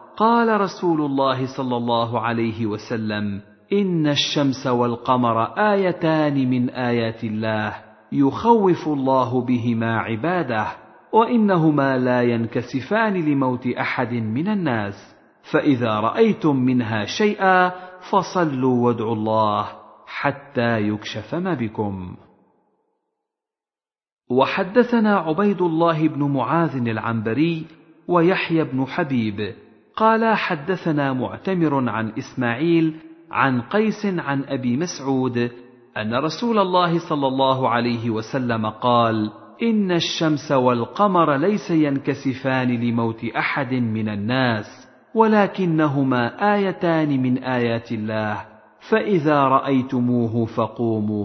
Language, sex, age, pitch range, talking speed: Arabic, male, 50-69, 120-180 Hz, 95 wpm